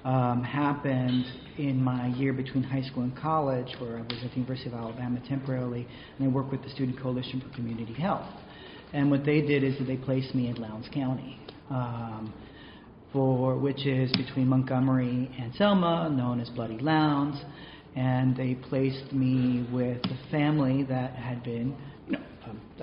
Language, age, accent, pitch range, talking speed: English, 40-59, American, 125-140 Hz, 170 wpm